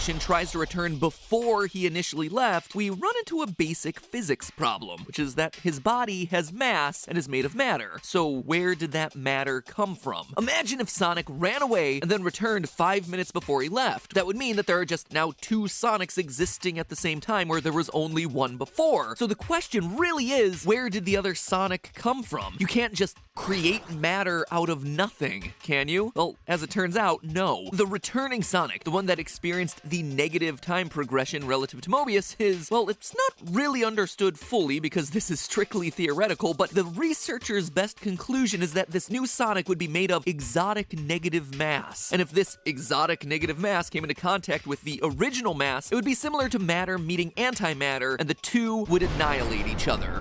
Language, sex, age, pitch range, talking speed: English, male, 20-39, 160-210 Hz, 200 wpm